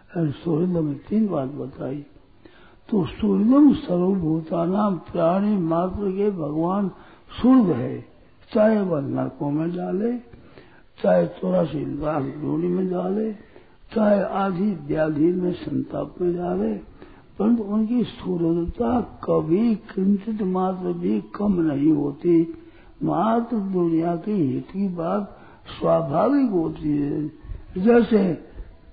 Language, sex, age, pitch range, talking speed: Hindi, male, 60-79, 165-210 Hz, 110 wpm